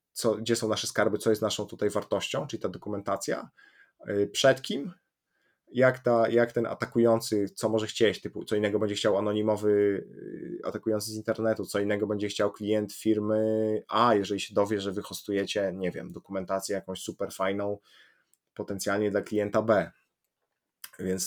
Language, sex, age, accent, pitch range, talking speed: Polish, male, 20-39, native, 105-115 Hz, 155 wpm